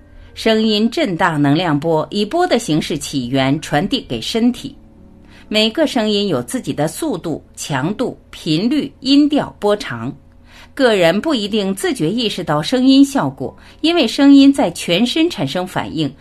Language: Chinese